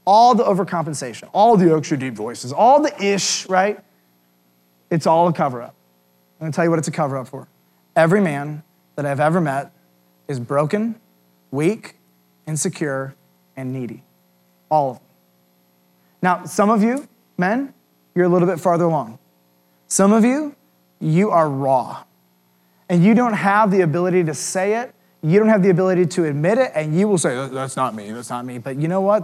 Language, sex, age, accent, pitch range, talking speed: English, male, 30-49, American, 130-210 Hz, 185 wpm